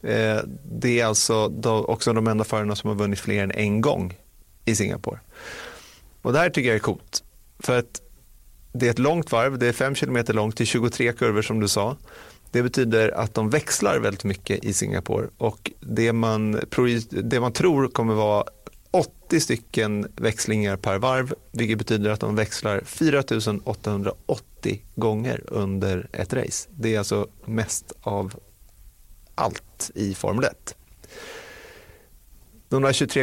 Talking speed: 150 wpm